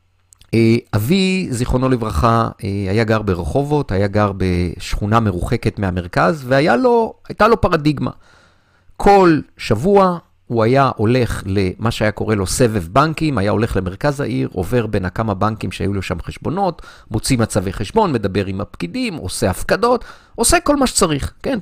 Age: 50-69